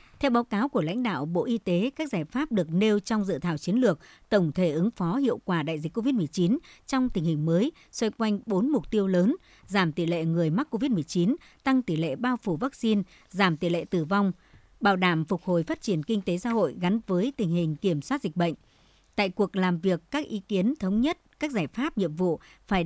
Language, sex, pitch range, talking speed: Vietnamese, male, 175-235 Hz, 230 wpm